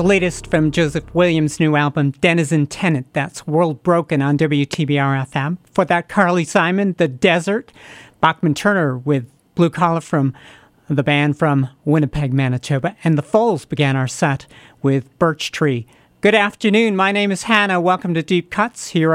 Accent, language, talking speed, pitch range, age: American, English, 160 wpm, 150-185 Hz, 40-59